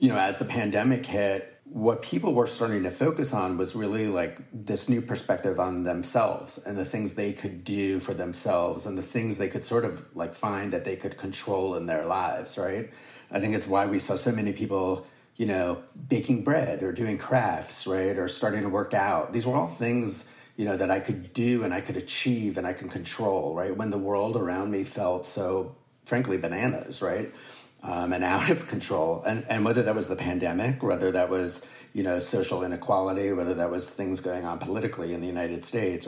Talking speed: 210 wpm